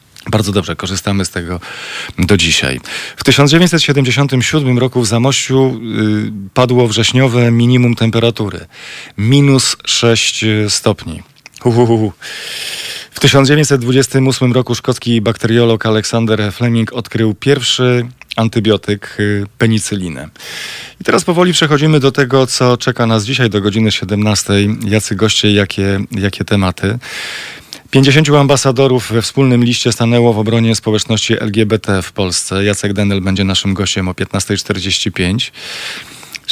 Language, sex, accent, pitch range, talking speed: Polish, male, native, 105-120 Hz, 110 wpm